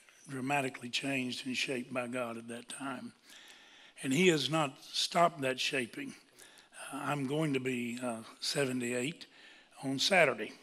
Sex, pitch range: male, 125-145 Hz